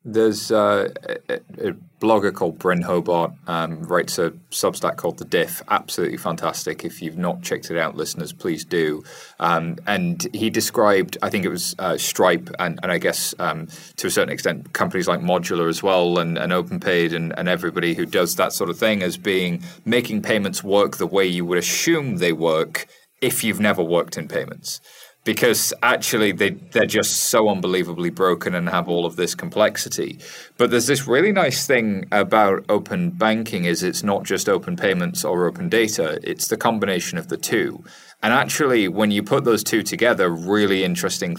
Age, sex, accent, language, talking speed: 30-49, male, British, English, 185 wpm